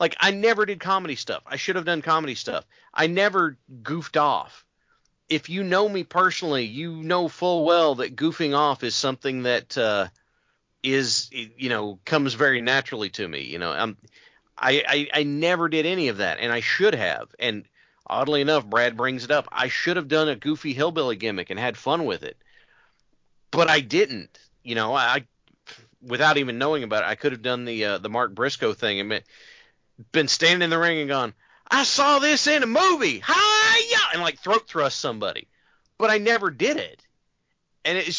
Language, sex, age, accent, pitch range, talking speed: English, male, 40-59, American, 125-180 Hz, 200 wpm